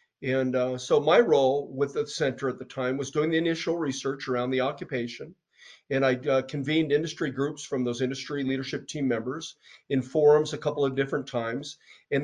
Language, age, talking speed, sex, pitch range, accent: English, 40-59, 190 wpm, male, 130-160 Hz, American